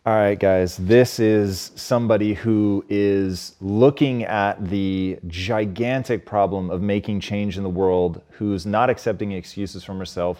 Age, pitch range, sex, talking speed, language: 30-49, 95-110 Hz, male, 145 wpm, English